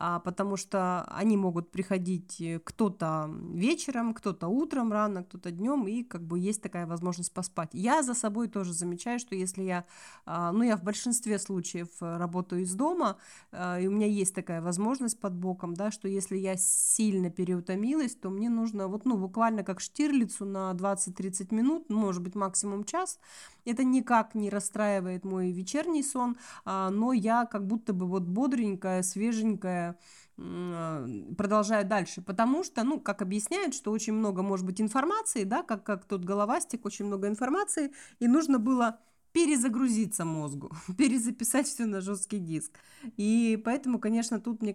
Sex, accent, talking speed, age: female, native, 155 wpm, 20-39